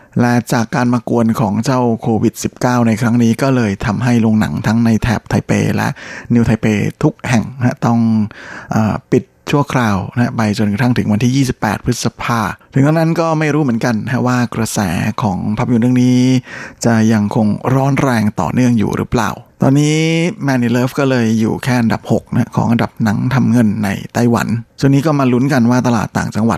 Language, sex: Thai, male